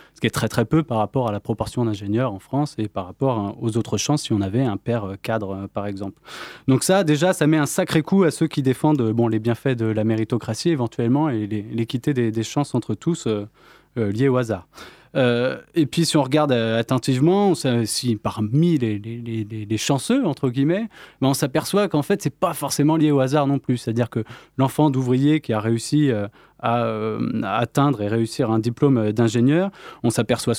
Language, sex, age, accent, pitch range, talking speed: French, male, 20-39, French, 110-145 Hz, 210 wpm